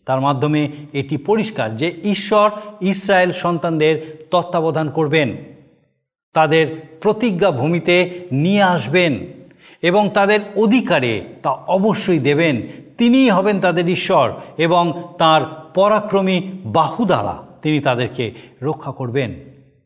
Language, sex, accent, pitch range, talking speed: Bengali, male, native, 145-200 Hz, 100 wpm